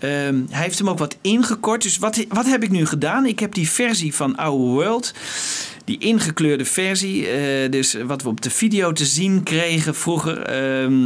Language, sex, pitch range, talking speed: Dutch, male, 130-180 Hz, 185 wpm